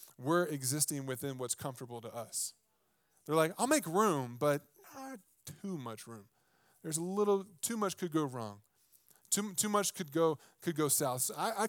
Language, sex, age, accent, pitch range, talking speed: English, male, 20-39, American, 125-165 Hz, 185 wpm